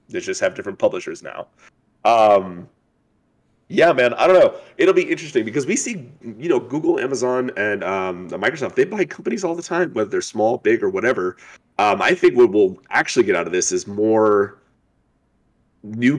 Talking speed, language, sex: 185 wpm, English, male